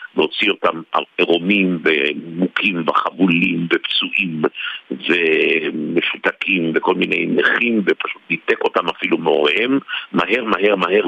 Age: 50-69